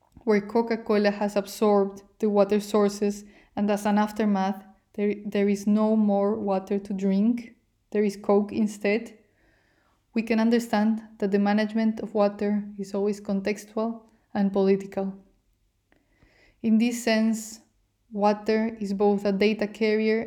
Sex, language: female, English